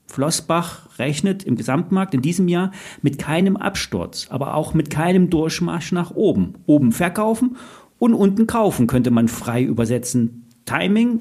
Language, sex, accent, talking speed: German, male, German, 145 wpm